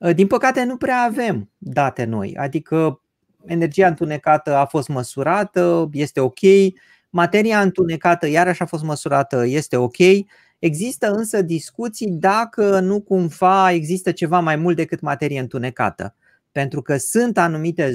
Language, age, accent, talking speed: Romanian, 30-49, native, 135 wpm